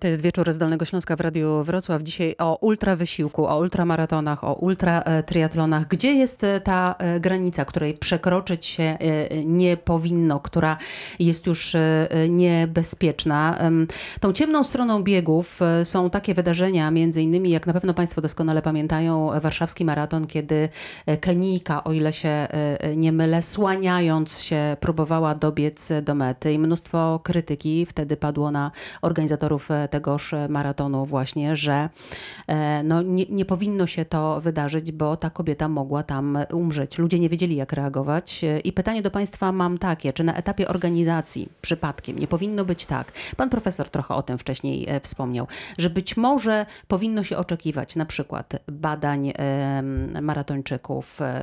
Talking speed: 140 wpm